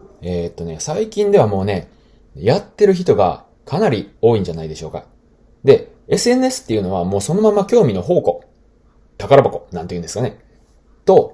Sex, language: male, Japanese